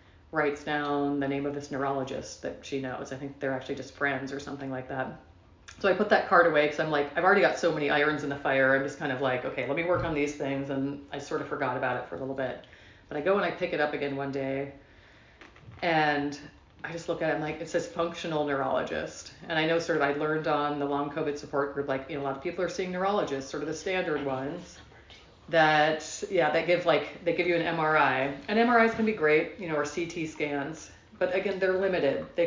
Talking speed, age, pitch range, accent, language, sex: 255 wpm, 30-49, 140-165 Hz, American, English, female